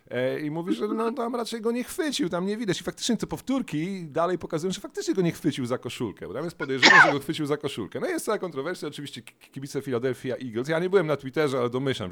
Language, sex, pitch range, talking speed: Polish, male, 125-190 Hz, 245 wpm